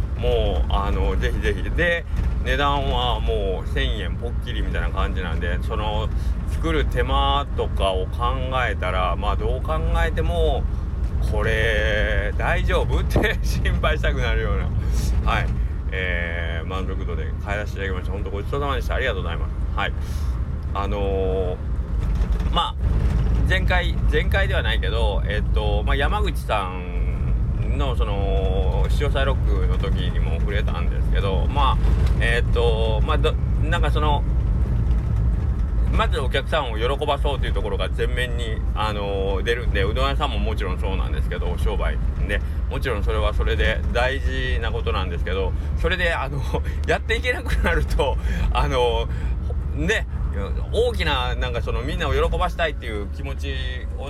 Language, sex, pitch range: Japanese, male, 70-85 Hz